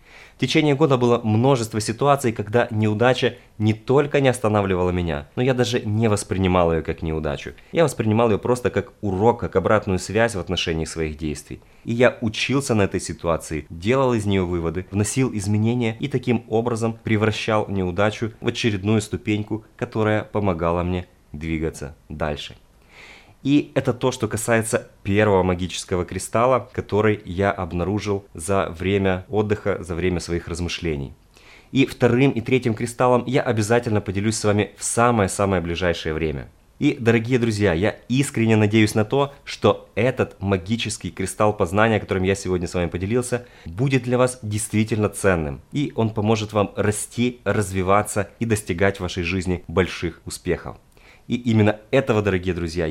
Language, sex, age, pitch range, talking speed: Russian, male, 20-39, 90-120 Hz, 150 wpm